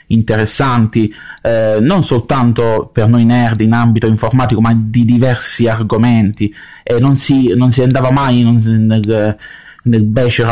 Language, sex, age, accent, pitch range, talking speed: Italian, male, 20-39, native, 110-125 Hz, 130 wpm